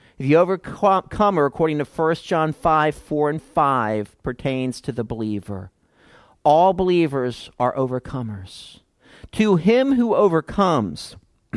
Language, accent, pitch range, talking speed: English, American, 115-170 Hz, 115 wpm